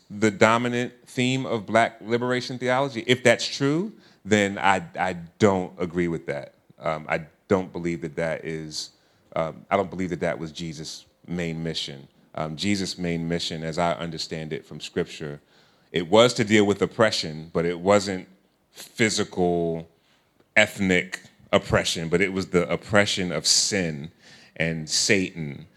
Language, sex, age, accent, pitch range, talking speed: English, male, 30-49, American, 85-100 Hz, 155 wpm